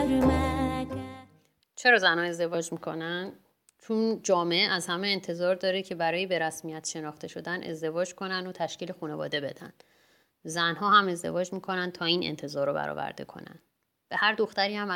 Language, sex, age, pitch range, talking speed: Persian, female, 30-49, 160-195 Hz, 145 wpm